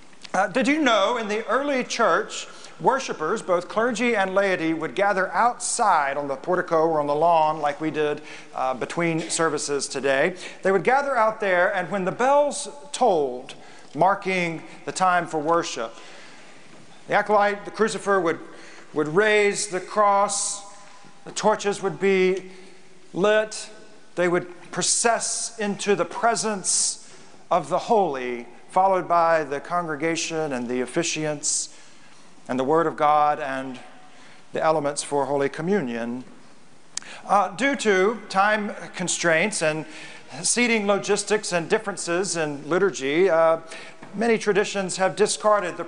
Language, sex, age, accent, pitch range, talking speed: English, male, 40-59, American, 160-205 Hz, 135 wpm